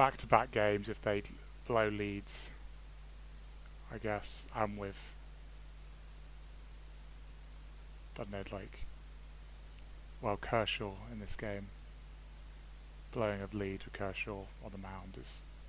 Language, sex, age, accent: English, male, 20-39, British